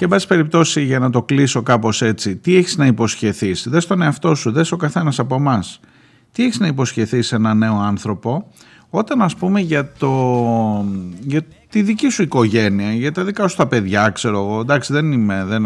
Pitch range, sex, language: 110-145 Hz, male, Greek